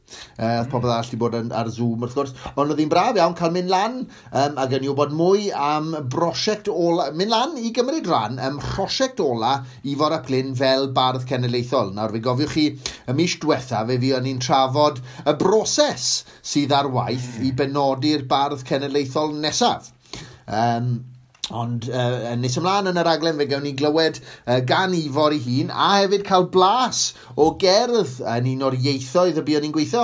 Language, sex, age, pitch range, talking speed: English, male, 30-49, 120-150 Hz, 190 wpm